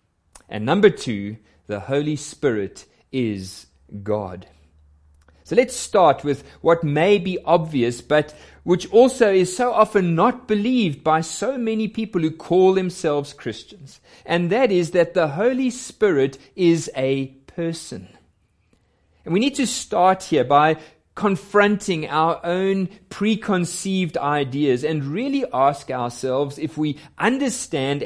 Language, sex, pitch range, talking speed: English, male, 130-195 Hz, 130 wpm